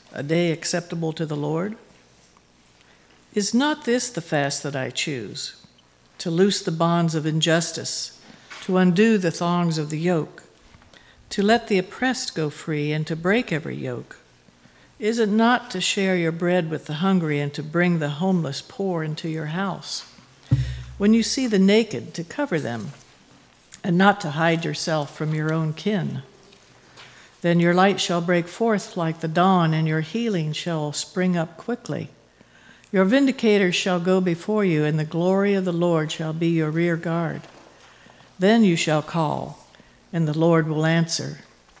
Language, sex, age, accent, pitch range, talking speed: English, female, 60-79, American, 155-195 Hz, 165 wpm